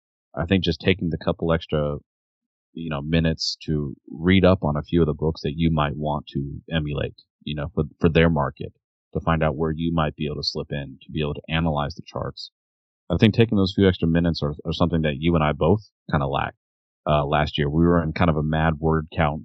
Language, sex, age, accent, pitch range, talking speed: English, male, 30-49, American, 75-85 Hz, 245 wpm